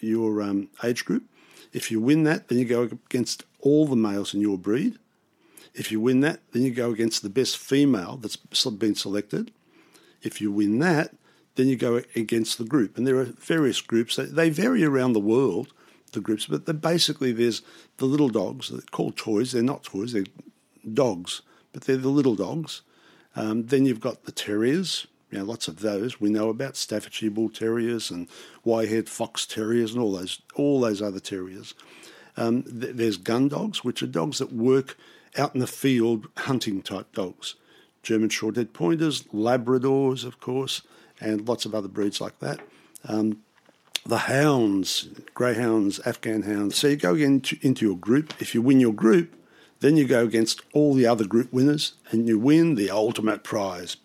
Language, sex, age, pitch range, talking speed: English, male, 50-69, 110-135 Hz, 180 wpm